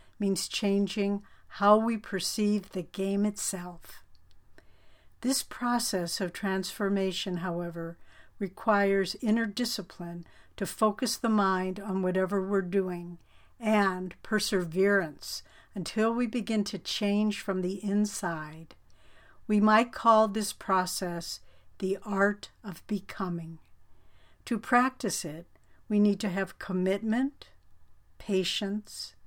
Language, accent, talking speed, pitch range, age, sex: English, American, 105 wpm, 175-210 Hz, 60-79, female